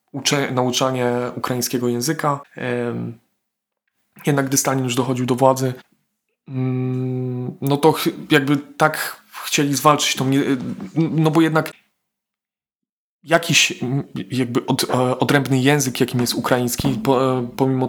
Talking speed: 105 wpm